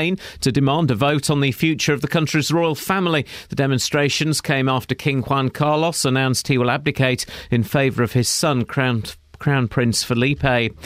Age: 40-59